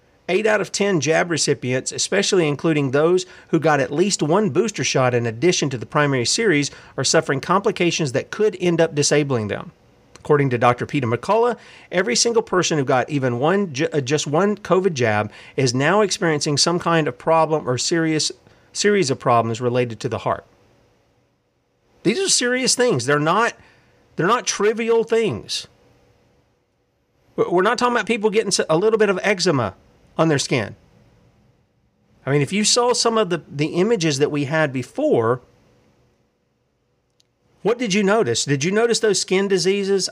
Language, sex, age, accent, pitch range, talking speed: English, male, 40-59, American, 145-210 Hz, 165 wpm